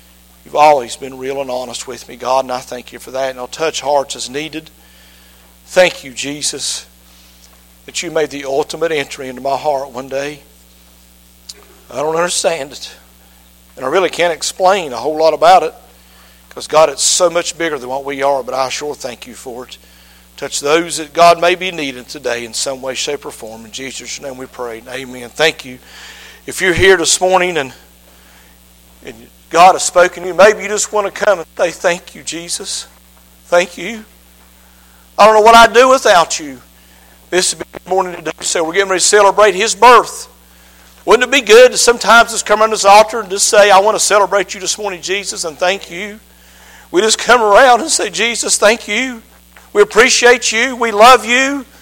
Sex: male